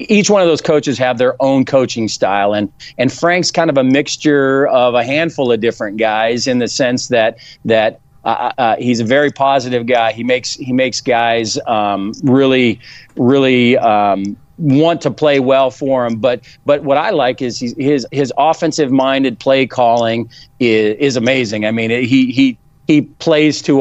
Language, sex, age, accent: English, male, 40-59, American